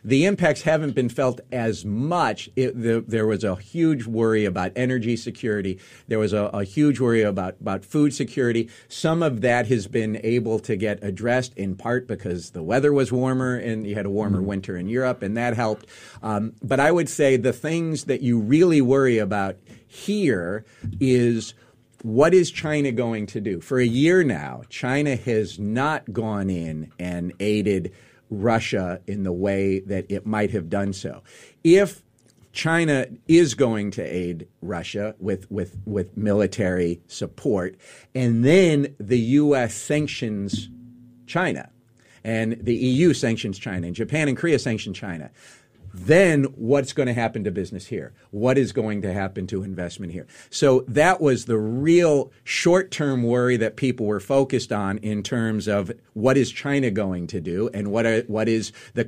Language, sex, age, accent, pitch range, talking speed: English, male, 50-69, American, 105-130 Hz, 170 wpm